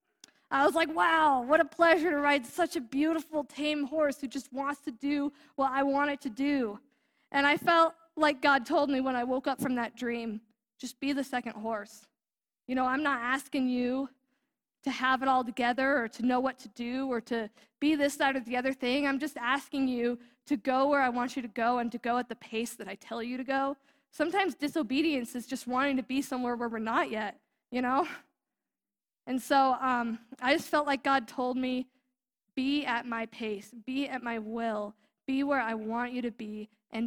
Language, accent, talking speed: English, American, 215 wpm